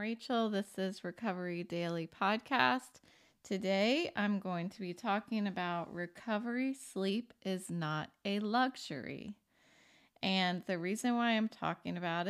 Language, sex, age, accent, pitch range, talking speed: English, female, 30-49, American, 185-225 Hz, 125 wpm